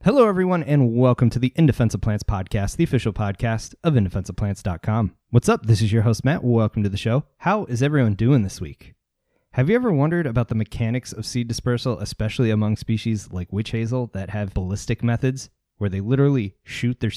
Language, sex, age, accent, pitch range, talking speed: English, male, 20-39, American, 105-125 Hz, 195 wpm